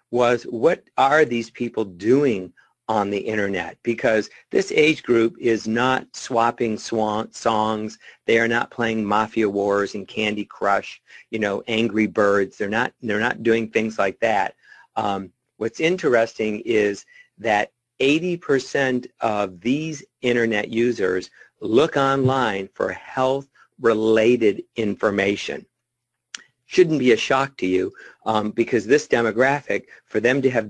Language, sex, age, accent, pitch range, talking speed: English, male, 50-69, American, 110-125 Hz, 135 wpm